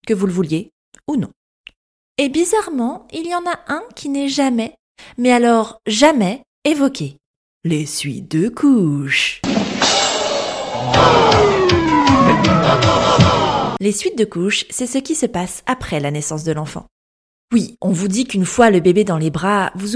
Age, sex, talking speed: 30-49, female, 150 wpm